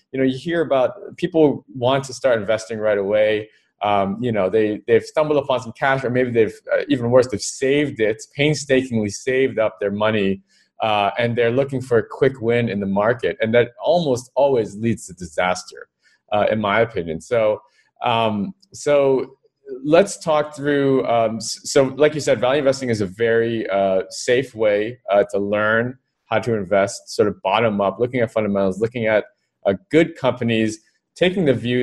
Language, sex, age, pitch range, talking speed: English, male, 20-39, 110-150 Hz, 180 wpm